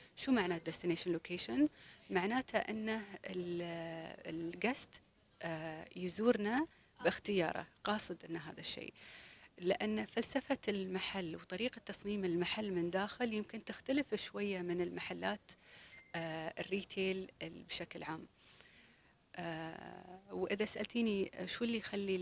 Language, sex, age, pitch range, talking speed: Arabic, female, 30-49, 170-205 Hz, 90 wpm